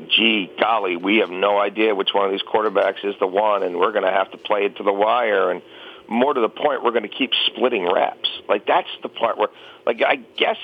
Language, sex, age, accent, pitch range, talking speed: English, male, 50-69, American, 100-135 Hz, 250 wpm